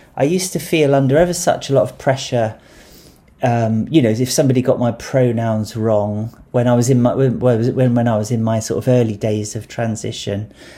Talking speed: 210 wpm